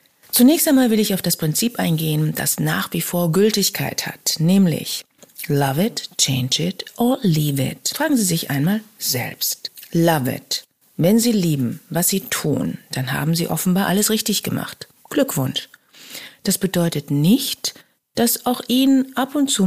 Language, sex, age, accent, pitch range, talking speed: German, female, 40-59, German, 150-205 Hz, 160 wpm